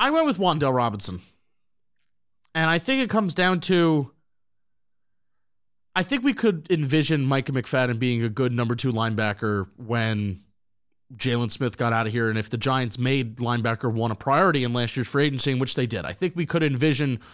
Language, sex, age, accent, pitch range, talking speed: English, male, 30-49, American, 115-155 Hz, 185 wpm